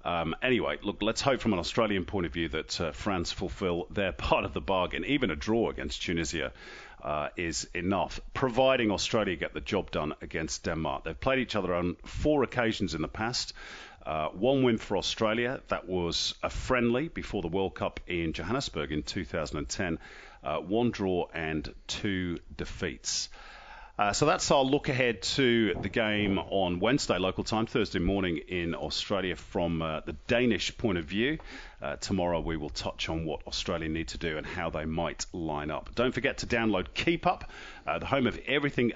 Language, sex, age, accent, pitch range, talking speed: English, male, 40-59, British, 85-120 Hz, 185 wpm